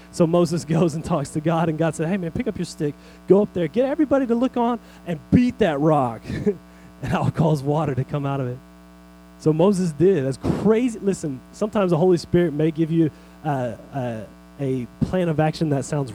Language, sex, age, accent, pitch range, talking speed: English, male, 30-49, American, 130-185 Hz, 215 wpm